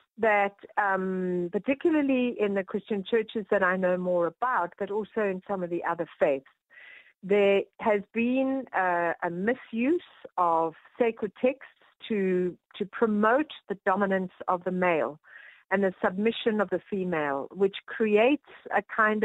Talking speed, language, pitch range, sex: 145 wpm, English, 180-230 Hz, female